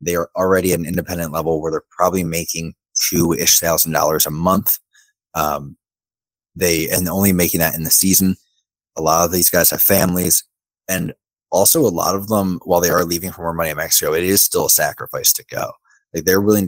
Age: 20-39